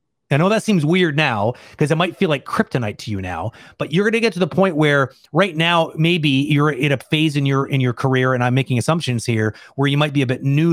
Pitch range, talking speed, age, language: 125-160 Hz, 270 wpm, 30-49, English